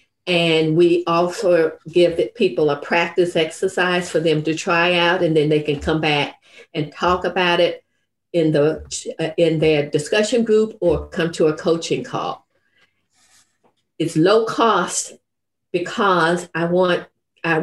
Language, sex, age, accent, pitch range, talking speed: English, female, 50-69, American, 160-185 Hz, 135 wpm